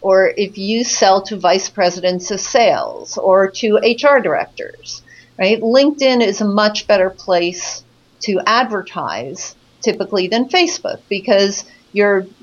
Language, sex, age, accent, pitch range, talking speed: English, female, 50-69, American, 185-235 Hz, 130 wpm